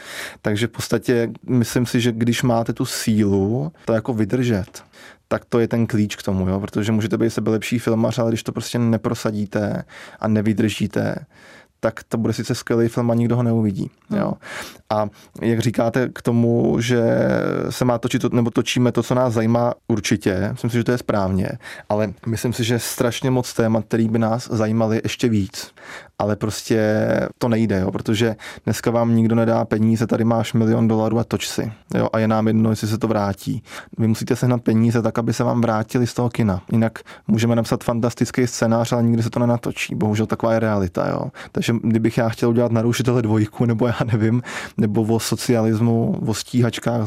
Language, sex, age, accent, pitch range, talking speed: Czech, male, 20-39, native, 110-120 Hz, 190 wpm